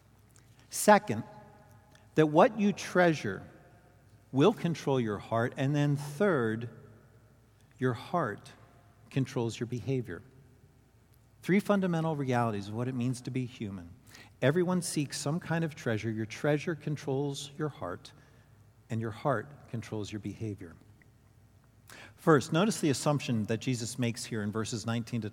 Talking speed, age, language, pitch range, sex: 135 wpm, 50-69, English, 115-145 Hz, male